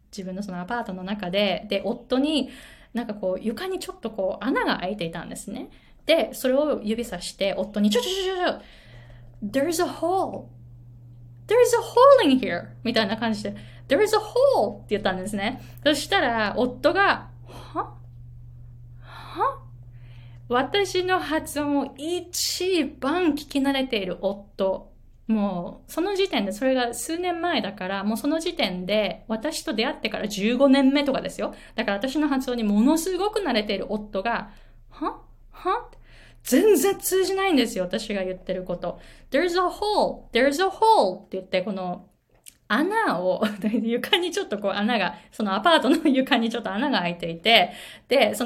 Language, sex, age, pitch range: Japanese, female, 20-39, 190-315 Hz